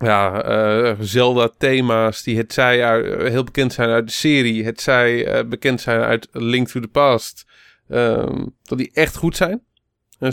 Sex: male